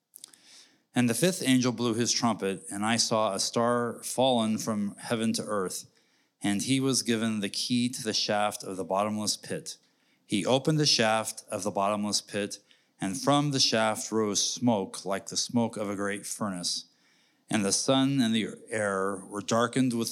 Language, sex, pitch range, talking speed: English, male, 100-120 Hz, 180 wpm